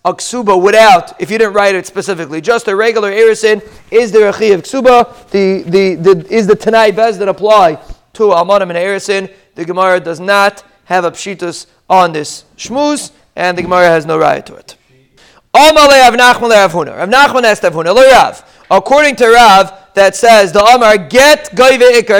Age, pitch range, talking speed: 30-49, 190-230 Hz, 155 wpm